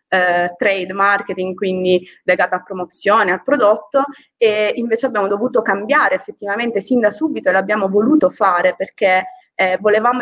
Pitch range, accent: 190-250 Hz, native